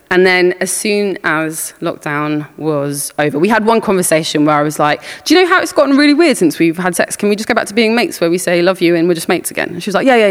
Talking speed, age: 305 wpm, 20-39